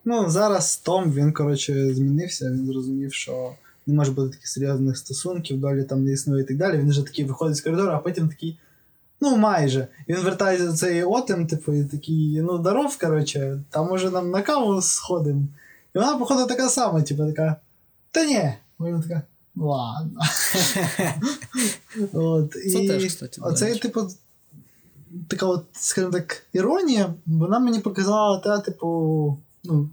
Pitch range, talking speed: 145-185 Hz, 155 wpm